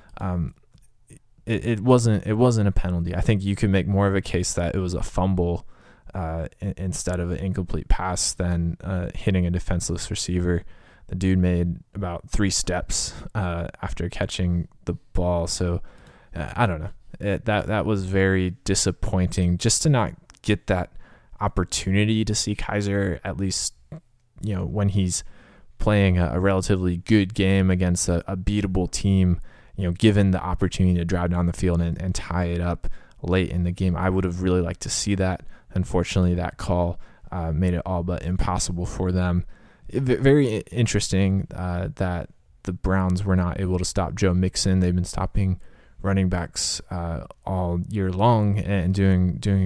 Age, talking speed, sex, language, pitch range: 20-39, 175 wpm, male, English, 90-100 Hz